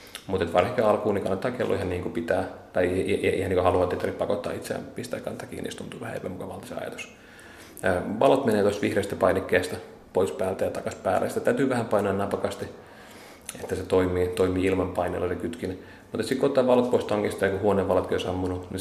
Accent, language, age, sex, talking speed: native, Finnish, 30-49, male, 205 wpm